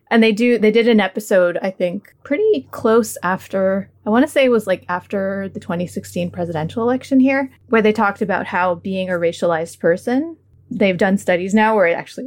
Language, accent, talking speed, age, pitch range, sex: English, American, 200 wpm, 20-39, 185-240 Hz, female